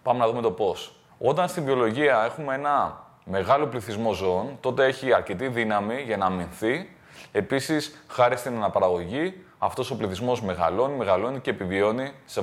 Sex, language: male, Greek